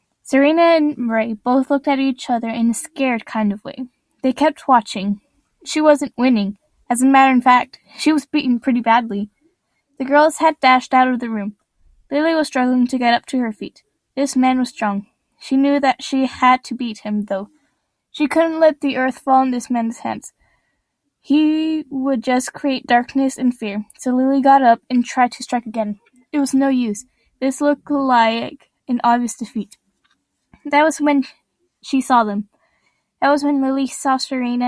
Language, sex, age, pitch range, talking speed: English, female, 10-29, 235-280 Hz, 185 wpm